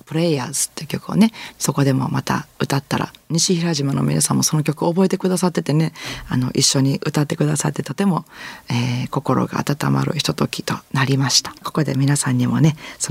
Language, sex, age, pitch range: Japanese, female, 40-59, 135-180 Hz